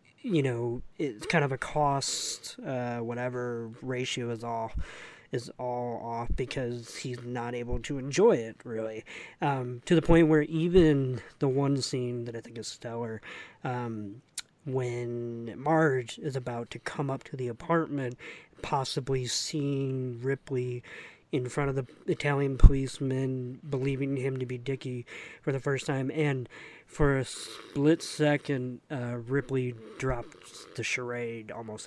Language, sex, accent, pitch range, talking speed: English, male, American, 120-140 Hz, 145 wpm